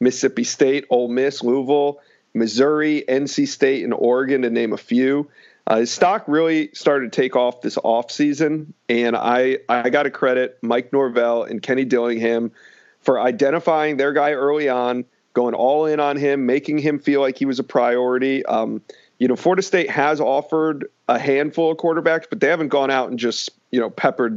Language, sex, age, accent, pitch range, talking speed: English, male, 40-59, American, 125-145 Hz, 180 wpm